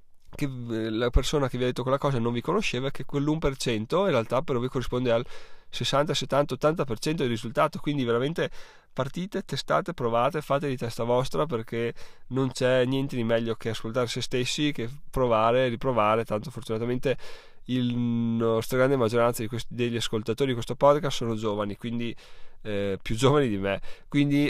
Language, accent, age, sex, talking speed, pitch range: Italian, native, 20-39, male, 170 wpm, 110-130 Hz